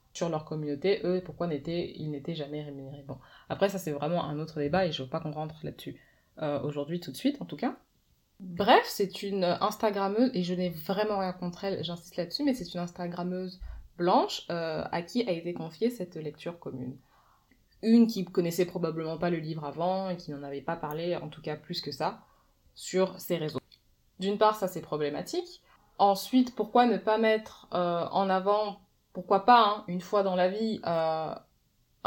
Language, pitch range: French, 155-190 Hz